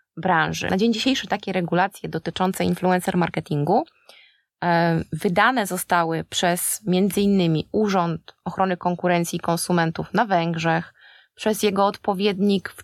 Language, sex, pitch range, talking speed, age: Polish, female, 175-210 Hz, 105 wpm, 20-39